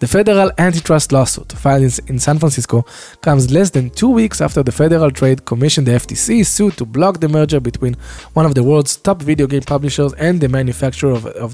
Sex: male